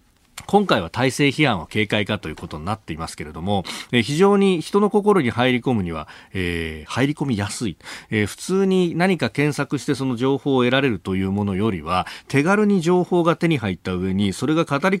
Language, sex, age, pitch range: Japanese, male, 40-59, 100-165 Hz